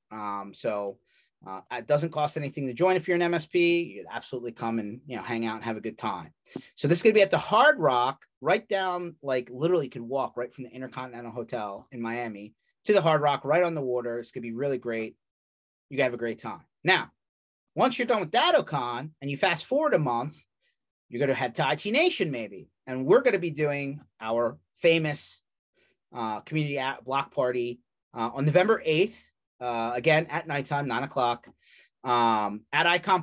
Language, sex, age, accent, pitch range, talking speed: English, male, 30-49, American, 115-155 Hz, 210 wpm